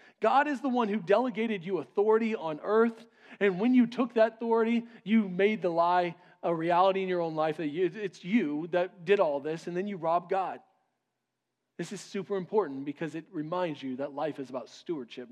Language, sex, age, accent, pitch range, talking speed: English, male, 40-59, American, 155-215 Hz, 195 wpm